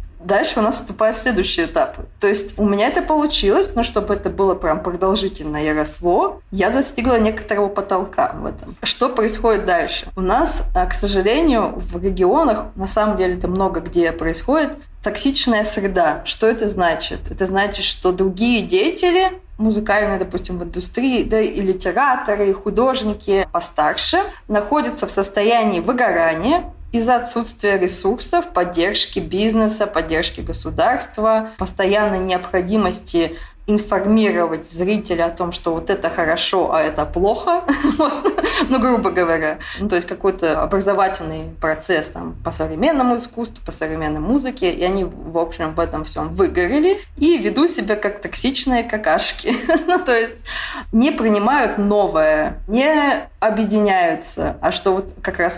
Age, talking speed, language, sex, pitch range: 20-39, 140 wpm, Russian, female, 180-235 Hz